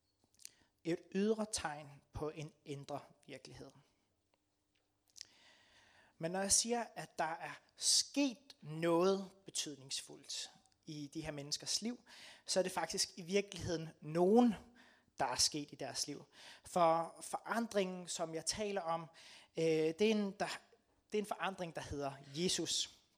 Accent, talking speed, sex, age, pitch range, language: native, 125 wpm, male, 30-49, 145-190 Hz, Danish